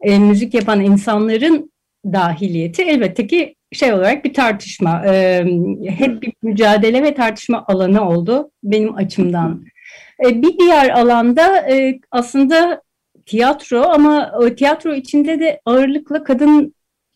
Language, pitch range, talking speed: Turkish, 200-285 Hz, 105 wpm